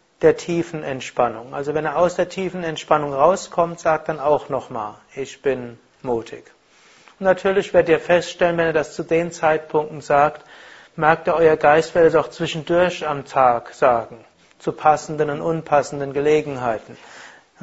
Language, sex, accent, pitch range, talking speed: German, male, German, 150-180 Hz, 155 wpm